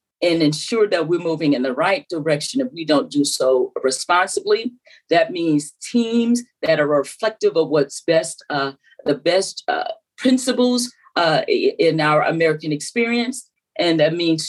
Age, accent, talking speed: 40-59, American, 155 wpm